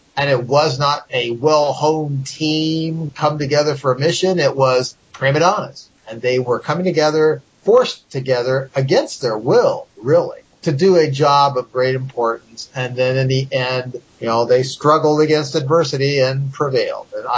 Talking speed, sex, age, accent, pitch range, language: 165 wpm, male, 50-69, American, 125-155 Hz, English